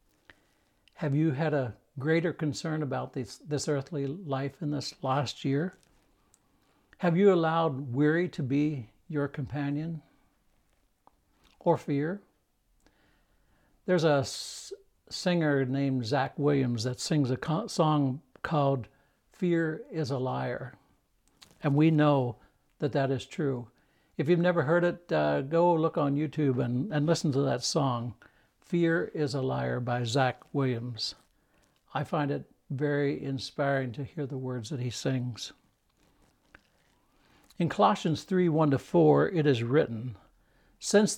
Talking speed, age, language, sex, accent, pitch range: 135 wpm, 60-79, English, male, American, 135-165 Hz